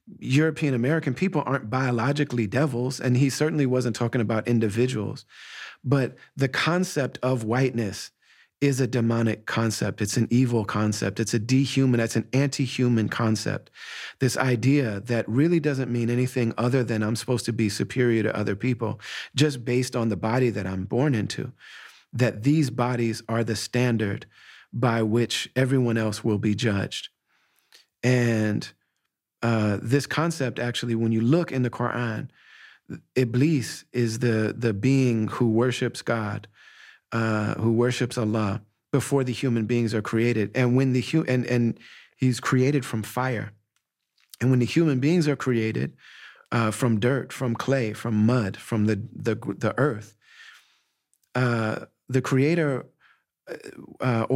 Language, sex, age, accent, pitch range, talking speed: English, male, 40-59, American, 115-130 Hz, 150 wpm